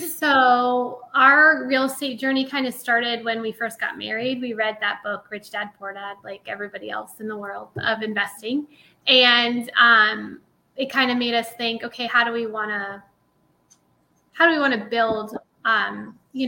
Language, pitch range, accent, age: English, 220-250 Hz, American, 10-29